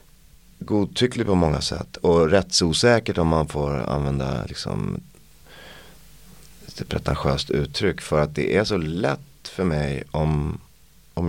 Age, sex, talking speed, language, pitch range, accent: 30-49, male, 135 wpm, Swedish, 70-85 Hz, native